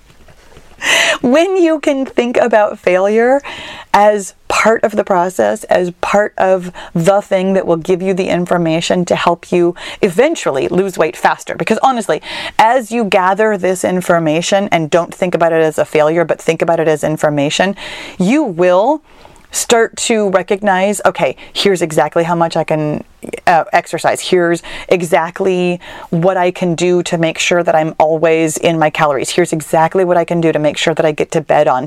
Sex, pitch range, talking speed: female, 160-200 Hz, 175 wpm